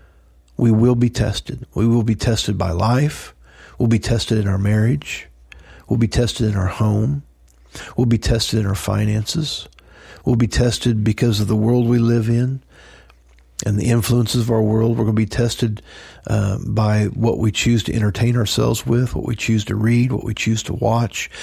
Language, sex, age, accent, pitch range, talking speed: English, male, 50-69, American, 100-125 Hz, 190 wpm